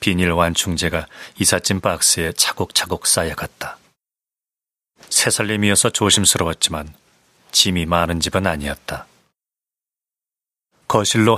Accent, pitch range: native, 85-105 Hz